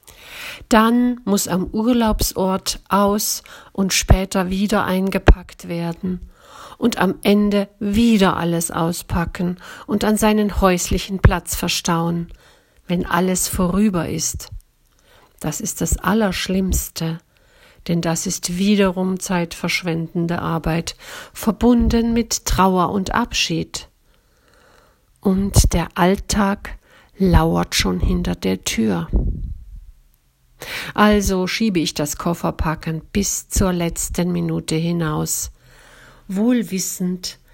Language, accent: German, German